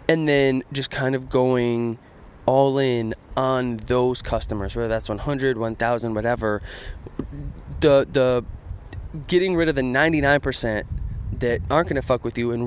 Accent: American